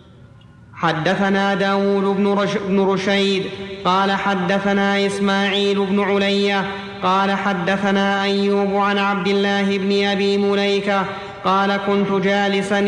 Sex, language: male, Arabic